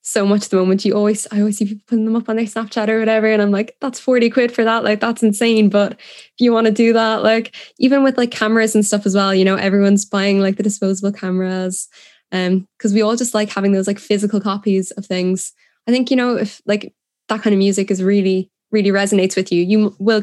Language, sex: English, female